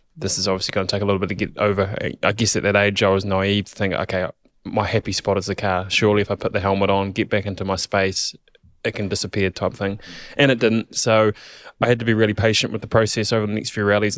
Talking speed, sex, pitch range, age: 270 wpm, male, 100-115 Hz, 20-39